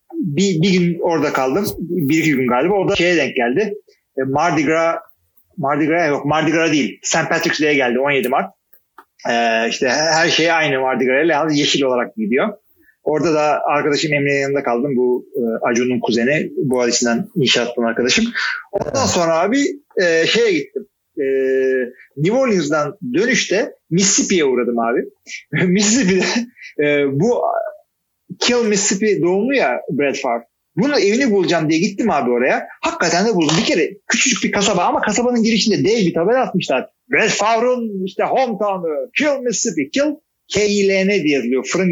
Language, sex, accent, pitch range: Turkish, male, native, 145-230 Hz